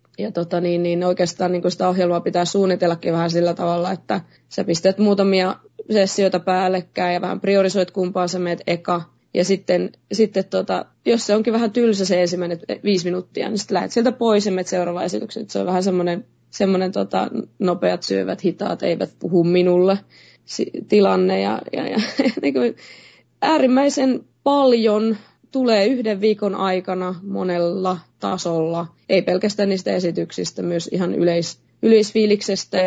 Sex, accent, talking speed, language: female, native, 145 wpm, Finnish